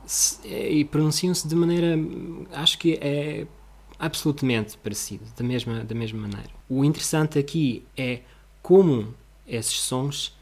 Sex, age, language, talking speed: male, 20-39, Portuguese, 115 wpm